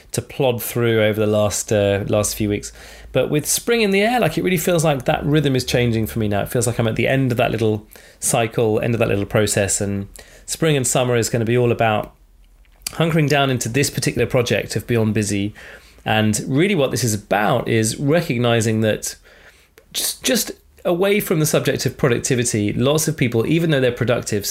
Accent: British